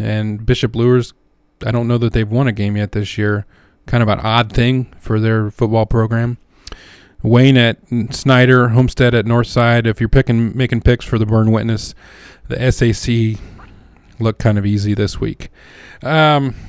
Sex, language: male, English